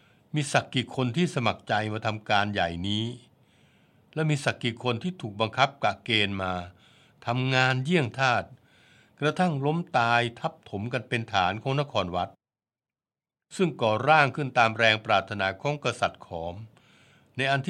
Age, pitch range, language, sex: 60-79, 110-140 Hz, Thai, male